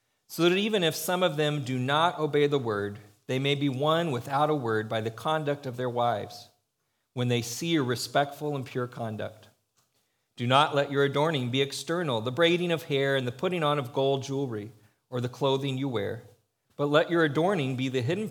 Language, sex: English, male